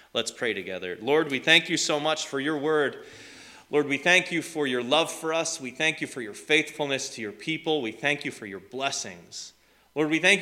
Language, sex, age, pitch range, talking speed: English, male, 30-49, 115-145 Hz, 225 wpm